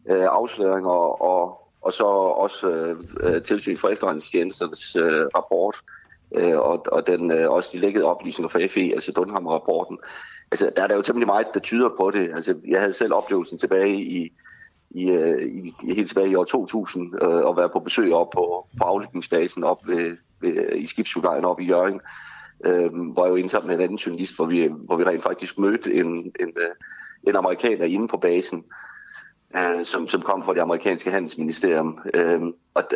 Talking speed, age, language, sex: 180 wpm, 30-49, Danish, male